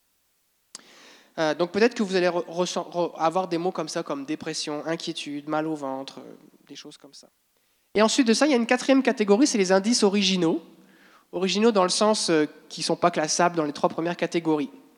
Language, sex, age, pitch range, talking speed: French, male, 20-39, 170-245 Hz, 190 wpm